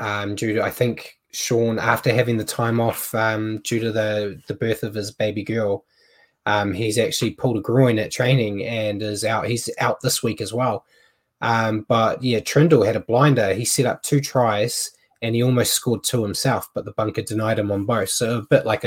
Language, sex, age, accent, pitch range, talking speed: English, male, 20-39, Australian, 110-130 Hz, 215 wpm